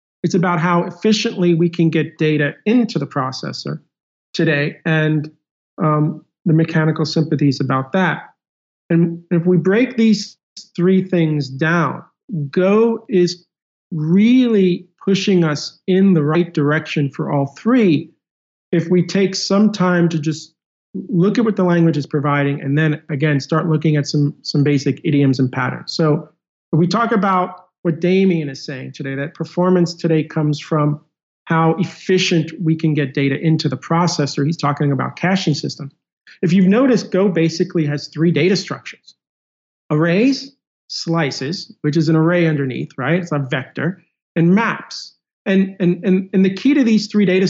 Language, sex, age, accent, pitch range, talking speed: English, male, 40-59, American, 150-185 Hz, 160 wpm